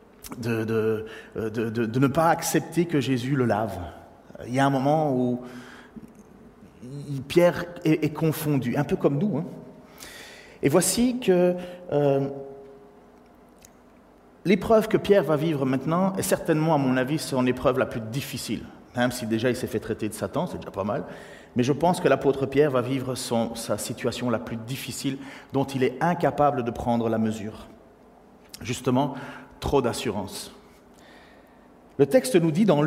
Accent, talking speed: French, 160 wpm